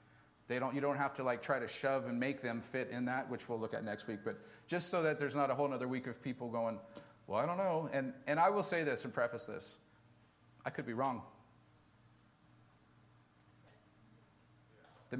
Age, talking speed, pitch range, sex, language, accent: 40-59, 210 wpm, 120-145 Hz, male, English, American